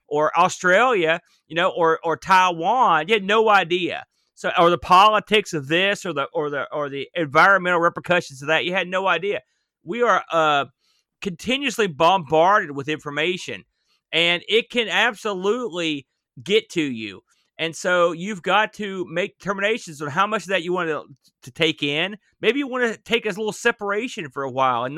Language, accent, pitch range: English, American, 160-210 Hz